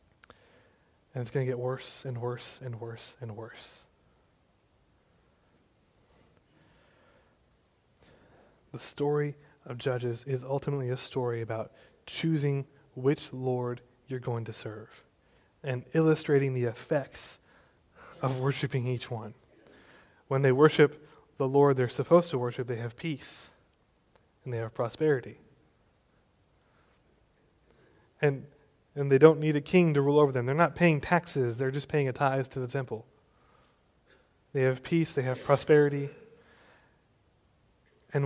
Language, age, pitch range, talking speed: English, 20-39, 125-145 Hz, 130 wpm